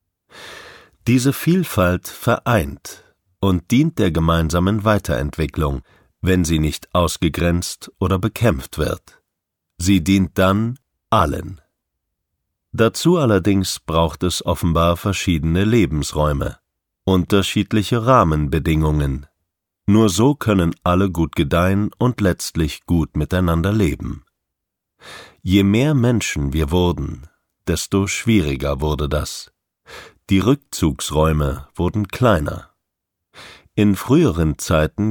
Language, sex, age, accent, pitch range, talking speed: German, male, 50-69, German, 80-105 Hz, 95 wpm